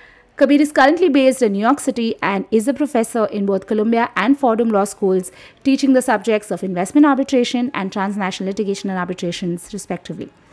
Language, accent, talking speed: English, Indian, 175 wpm